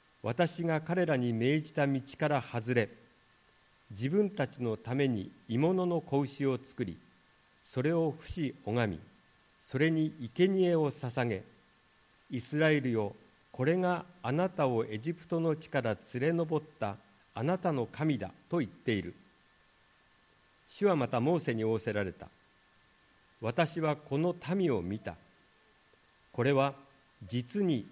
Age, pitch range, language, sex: 50-69, 115-160 Hz, Japanese, male